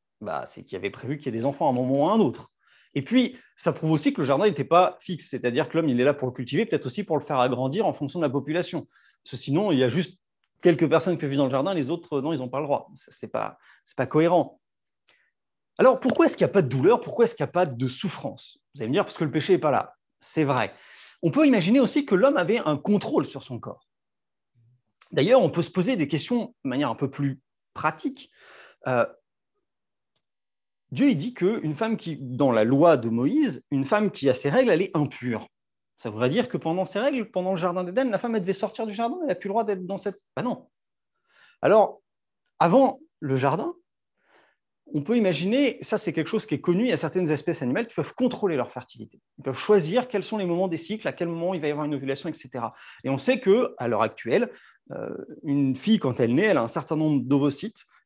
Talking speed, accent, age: 250 wpm, French, 30-49